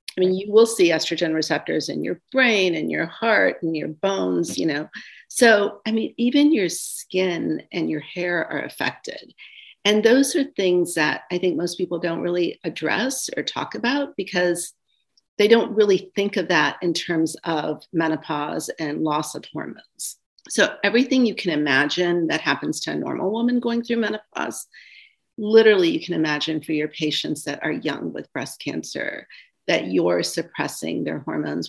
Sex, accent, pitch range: female, American, 165-220 Hz